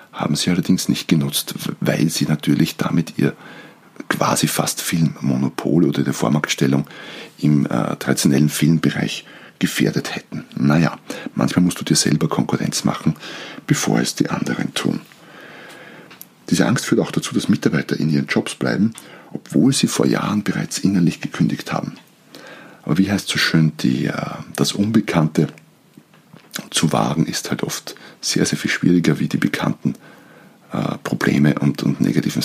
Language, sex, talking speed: German, male, 150 wpm